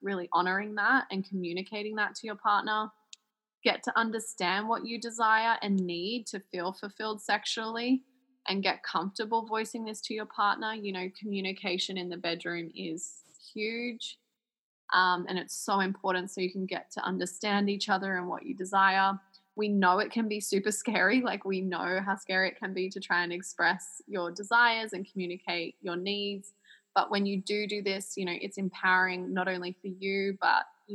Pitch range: 185-220 Hz